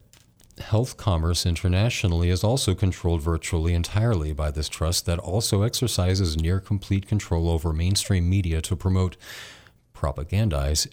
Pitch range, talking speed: 80-95 Hz, 125 wpm